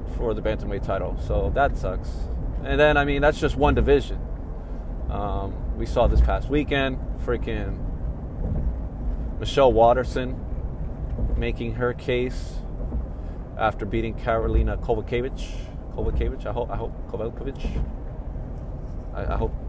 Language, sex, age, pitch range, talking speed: English, male, 20-39, 80-125 Hz, 120 wpm